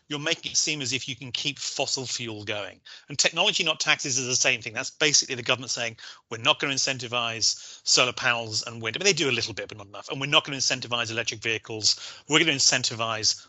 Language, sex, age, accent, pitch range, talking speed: English, male, 30-49, British, 115-145 Hz, 250 wpm